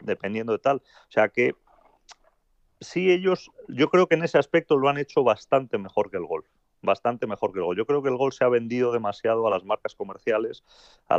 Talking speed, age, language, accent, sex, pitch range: 225 wpm, 30-49, Spanish, Spanish, male, 115-145 Hz